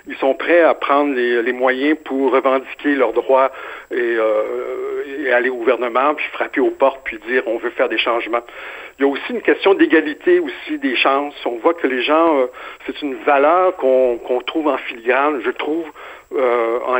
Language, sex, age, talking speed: French, male, 60-79, 200 wpm